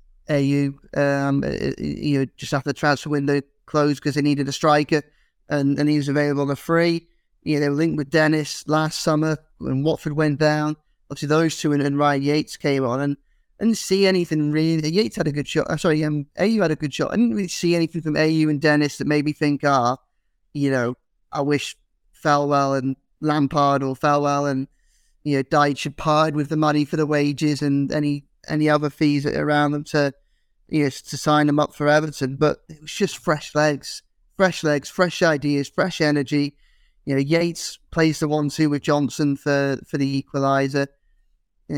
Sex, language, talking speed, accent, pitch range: male, English, 195 wpm, British, 140-155 Hz